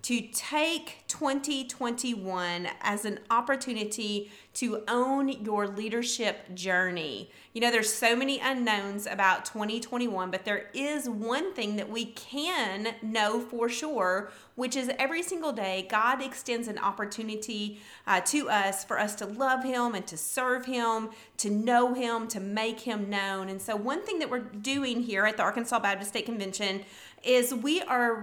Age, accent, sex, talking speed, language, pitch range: 30-49, American, female, 160 wpm, English, 205-250 Hz